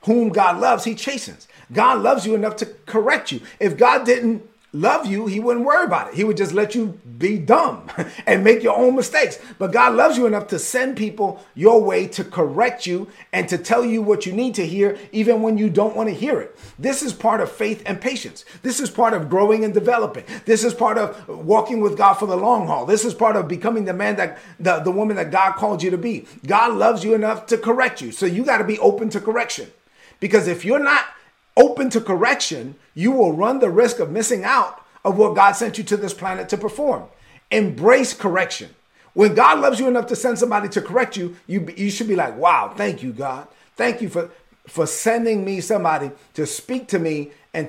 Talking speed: 225 wpm